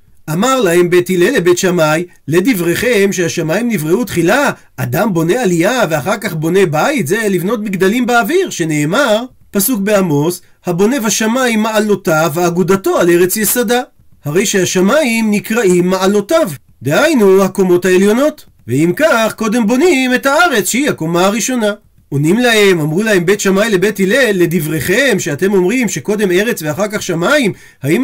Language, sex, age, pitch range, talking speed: Hebrew, male, 40-59, 175-235 Hz, 135 wpm